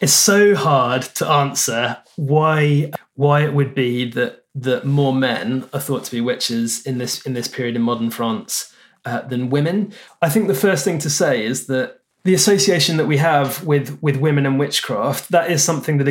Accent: British